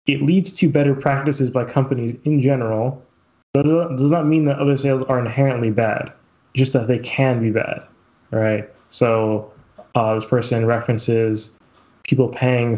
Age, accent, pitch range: 20-39, American, 115-140 Hz